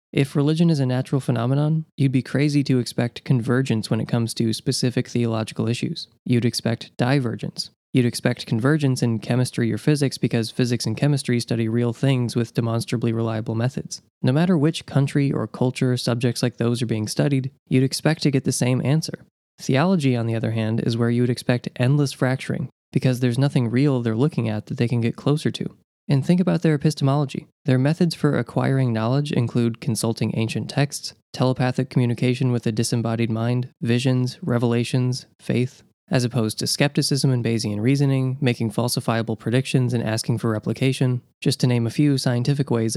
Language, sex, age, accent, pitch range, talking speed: English, male, 20-39, American, 120-140 Hz, 175 wpm